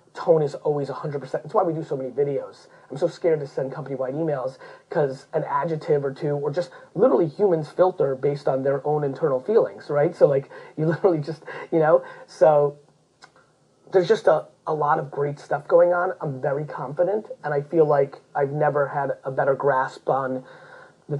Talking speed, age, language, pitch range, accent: 190 wpm, 30-49, English, 140-175 Hz, American